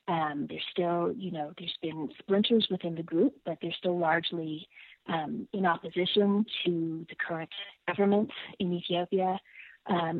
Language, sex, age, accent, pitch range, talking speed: English, female, 30-49, American, 165-200 Hz, 145 wpm